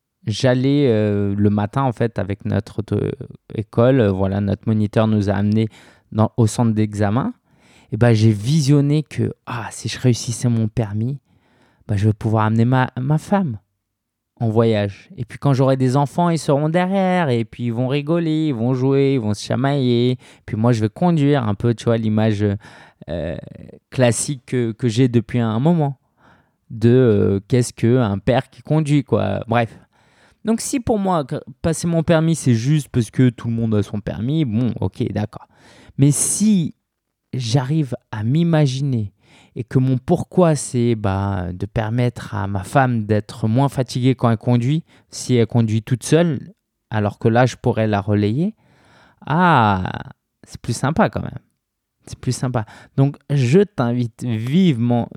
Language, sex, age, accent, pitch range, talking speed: French, male, 20-39, French, 110-140 Hz, 170 wpm